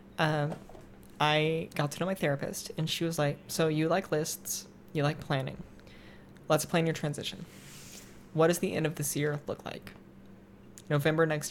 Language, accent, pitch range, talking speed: English, American, 145-165 Hz, 170 wpm